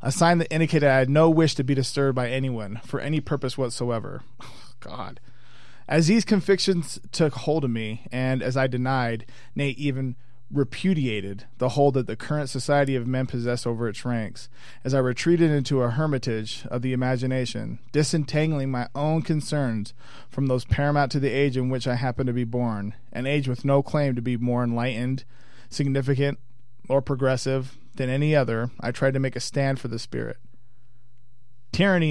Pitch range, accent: 120-140 Hz, American